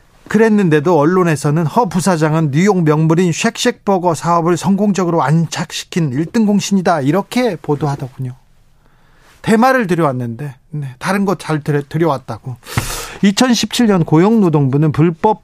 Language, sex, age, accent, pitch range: Korean, male, 40-59, native, 145-185 Hz